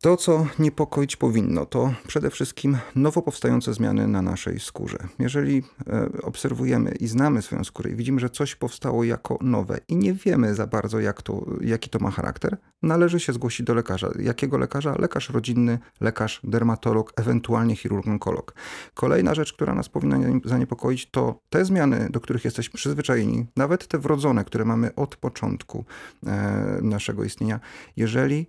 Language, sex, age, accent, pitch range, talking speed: Polish, male, 40-59, native, 110-130 Hz, 155 wpm